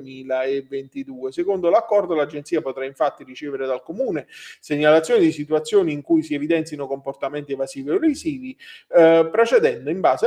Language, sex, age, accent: Italian, male, 40-59, native